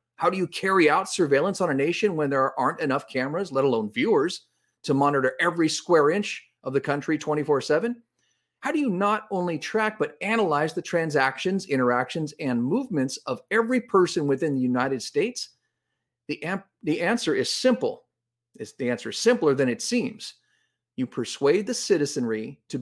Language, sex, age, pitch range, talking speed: English, male, 40-59, 130-190 Hz, 165 wpm